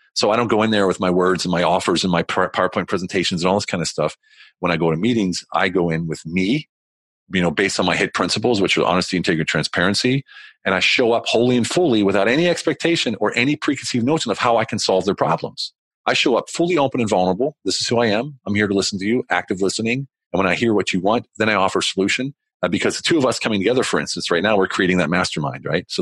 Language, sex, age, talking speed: English, male, 40-59, 265 wpm